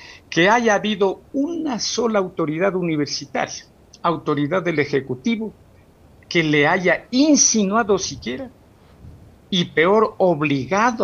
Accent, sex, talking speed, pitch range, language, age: Mexican, male, 100 wpm, 140-205 Hz, Spanish, 60-79